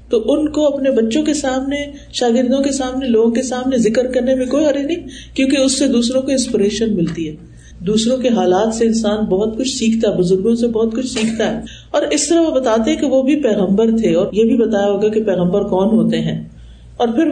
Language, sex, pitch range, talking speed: Urdu, female, 195-265 Hz, 225 wpm